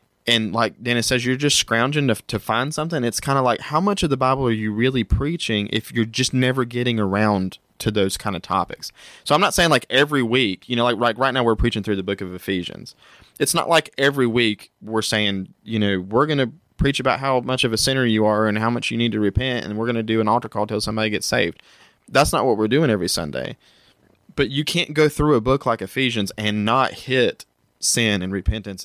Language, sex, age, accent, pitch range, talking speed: English, male, 20-39, American, 100-125 Hz, 245 wpm